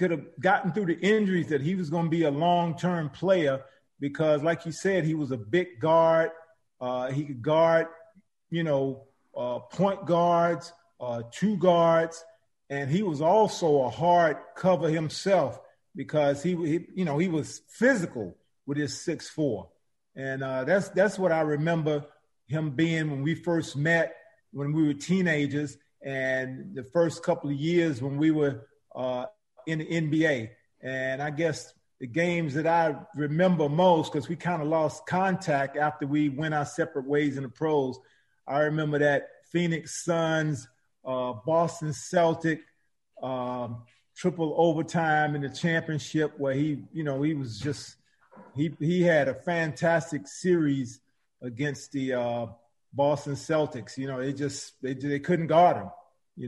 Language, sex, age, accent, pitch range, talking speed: English, male, 40-59, American, 140-170 Hz, 160 wpm